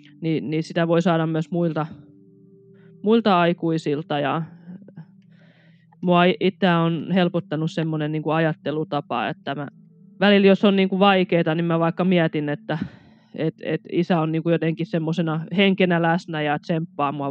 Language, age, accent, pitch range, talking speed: Finnish, 20-39, native, 150-185 Hz, 145 wpm